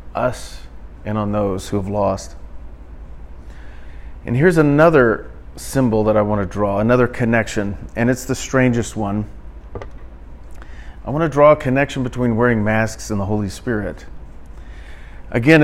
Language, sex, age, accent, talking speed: English, male, 40-59, American, 140 wpm